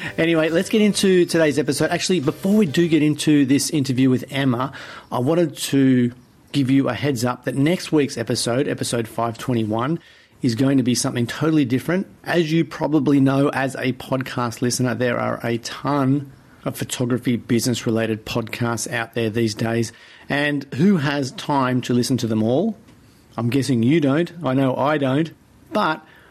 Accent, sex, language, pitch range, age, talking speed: Australian, male, English, 115-140 Hz, 40-59, 175 wpm